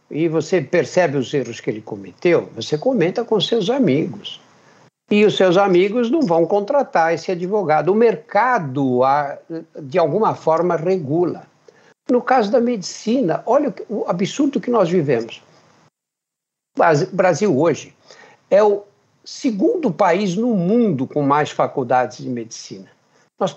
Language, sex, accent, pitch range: Portuguese, male, Brazilian, 140-215 Hz